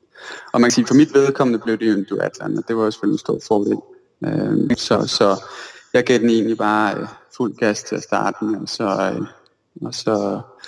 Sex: male